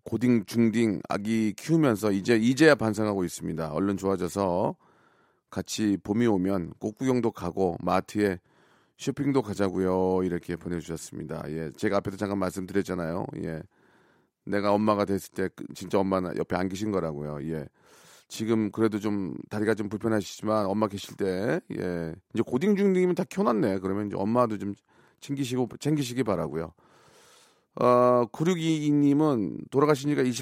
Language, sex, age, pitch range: Korean, male, 40-59, 95-120 Hz